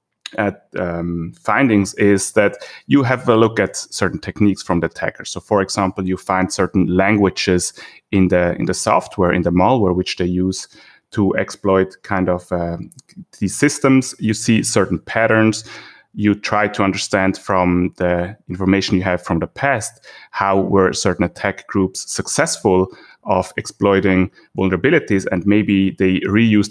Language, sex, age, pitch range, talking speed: English, male, 30-49, 95-120 Hz, 155 wpm